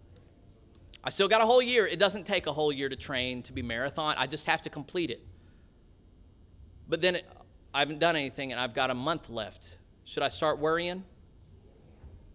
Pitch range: 90-150 Hz